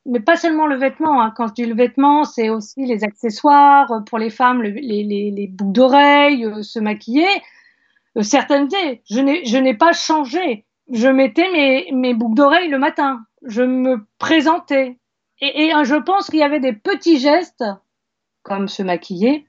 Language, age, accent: French, 40-59, French